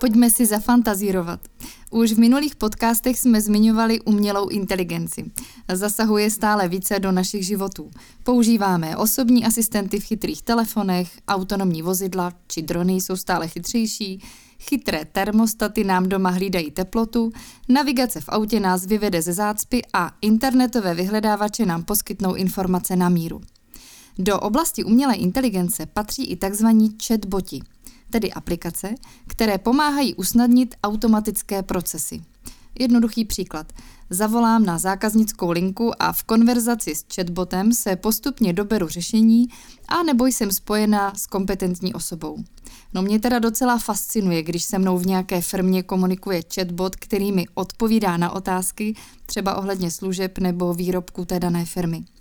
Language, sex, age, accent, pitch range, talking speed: Czech, female, 20-39, native, 185-230 Hz, 130 wpm